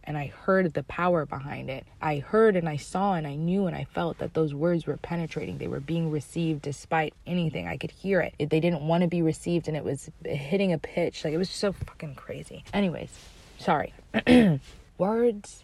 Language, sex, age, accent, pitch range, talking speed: English, female, 20-39, American, 160-180 Hz, 205 wpm